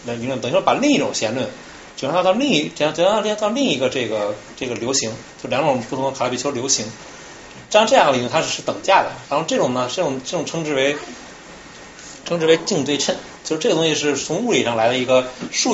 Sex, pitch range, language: male, 115-155 Hz, Chinese